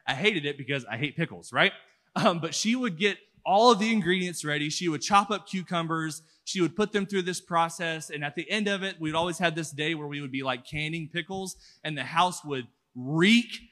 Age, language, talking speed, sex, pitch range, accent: 20-39, English, 230 wpm, male, 145-195 Hz, American